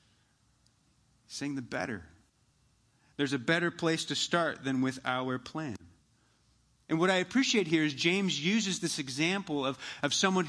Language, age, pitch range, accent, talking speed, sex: English, 30-49, 145-185 Hz, American, 150 wpm, male